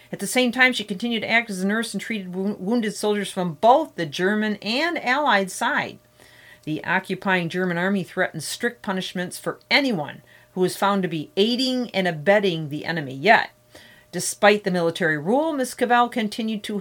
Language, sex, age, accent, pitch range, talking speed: English, female, 50-69, American, 160-210 Hz, 180 wpm